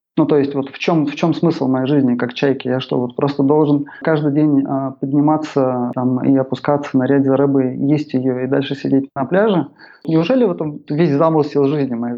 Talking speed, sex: 200 wpm, male